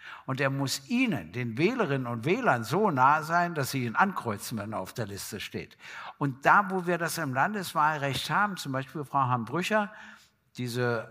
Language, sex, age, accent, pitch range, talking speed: German, male, 60-79, German, 120-160 Hz, 185 wpm